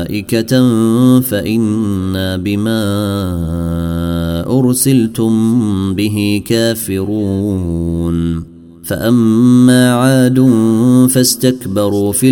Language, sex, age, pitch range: Arabic, male, 30-49, 100-115 Hz